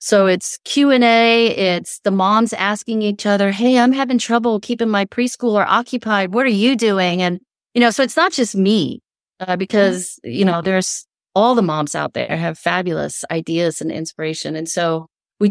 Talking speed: 180 wpm